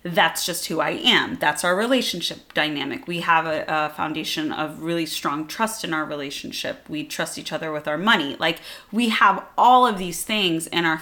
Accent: American